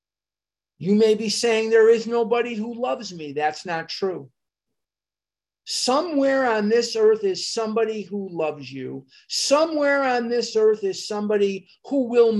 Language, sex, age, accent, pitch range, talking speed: English, male, 50-69, American, 170-225 Hz, 145 wpm